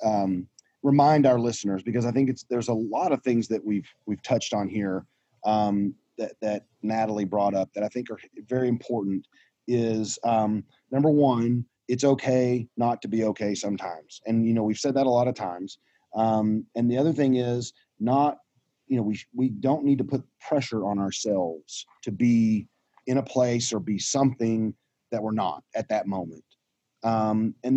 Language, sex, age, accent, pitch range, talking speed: English, male, 30-49, American, 105-130 Hz, 185 wpm